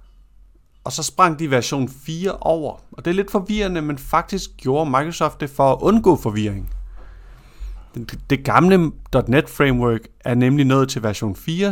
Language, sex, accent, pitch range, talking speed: Danish, male, native, 110-160 Hz, 155 wpm